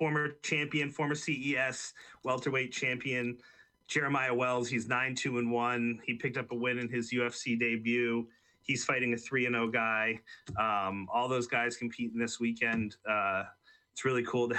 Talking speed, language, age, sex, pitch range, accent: 150 wpm, English, 30-49, male, 115-130 Hz, American